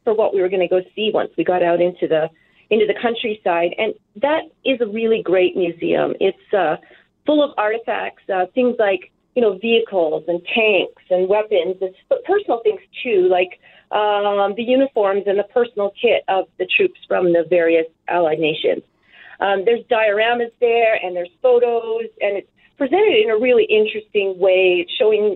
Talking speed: 180 wpm